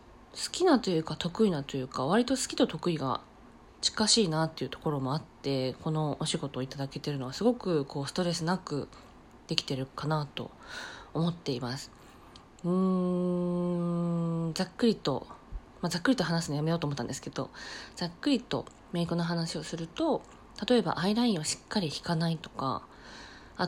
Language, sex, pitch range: Japanese, female, 145-200 Hz